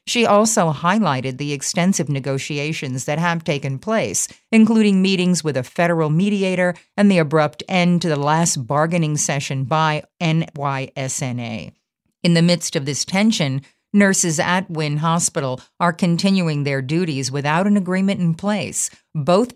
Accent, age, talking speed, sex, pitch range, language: American, 50-69, 145 wpm, female, 145-185 Hz, English